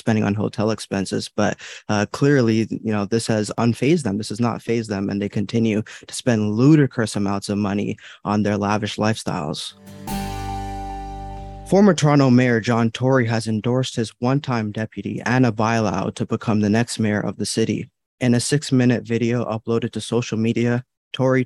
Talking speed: 170 wpm